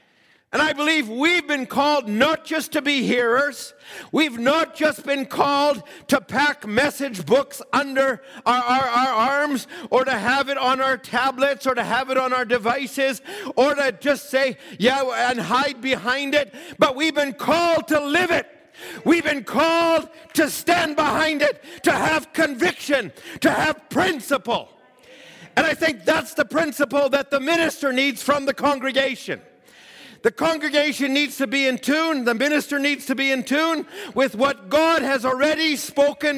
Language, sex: English, male